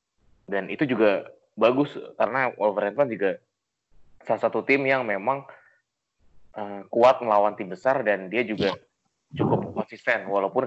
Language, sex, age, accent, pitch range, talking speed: Indonesian, male, 20-39, native, 110-140 Hz, 130 wpm